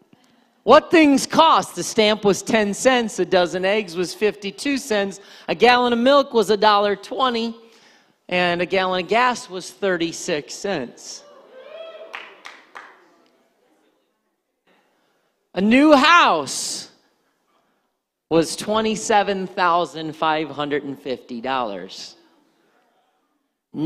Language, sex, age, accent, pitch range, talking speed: English, male, 40-59, American, 160-215 Hz, 85 wpm